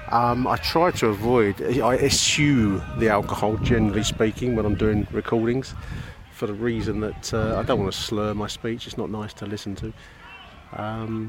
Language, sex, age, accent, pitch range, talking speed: English, male, 40-59, British, 105-125 Hz, 180 wpm